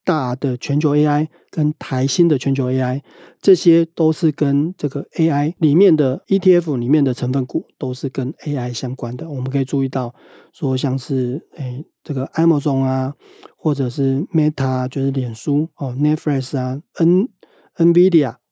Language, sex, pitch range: Chinese, male, 130-160 Hz